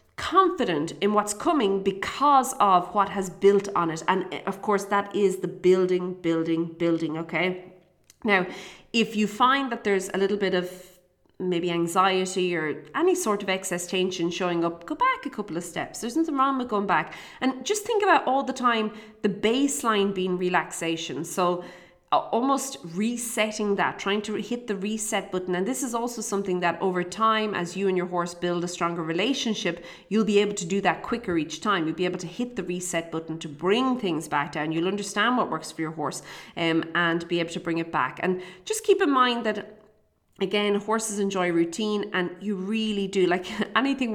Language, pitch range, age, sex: English, 175-215 Hz, 30-49, female